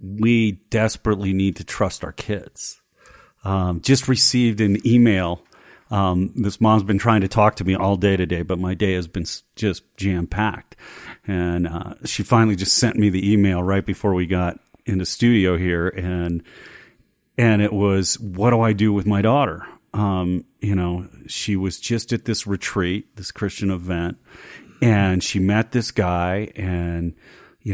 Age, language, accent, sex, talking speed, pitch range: 40-59, English, American, male, 175 wpm, 90-105 Hz